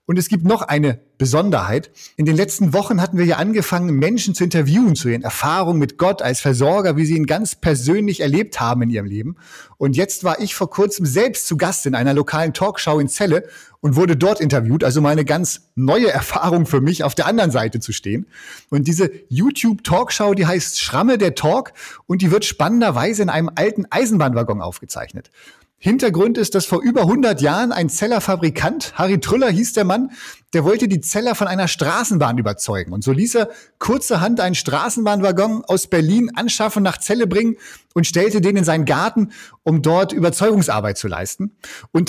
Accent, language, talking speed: German, German, 190 wpm